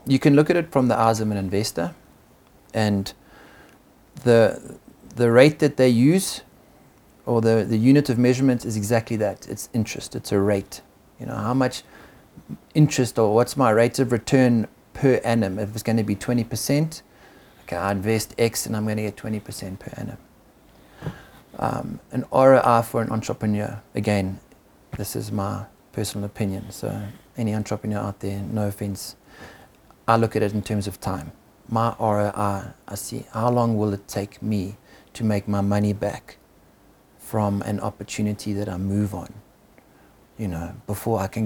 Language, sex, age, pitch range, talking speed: English, male, 30-49, 100-115 Hz, 170 wpm